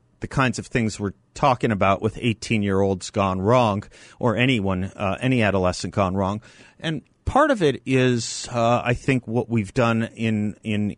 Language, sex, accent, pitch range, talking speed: English, male, American, 105-130 Hz, 185 wpm